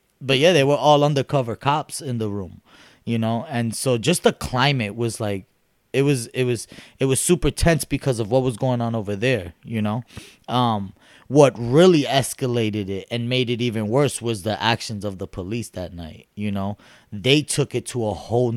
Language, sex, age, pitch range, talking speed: English, male, 20-39, 105-130 Hz, 205 wpm